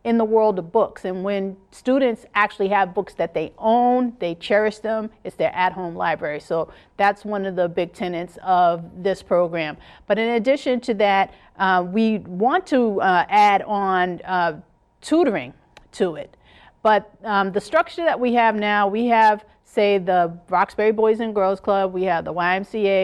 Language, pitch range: English, 180-220 Hz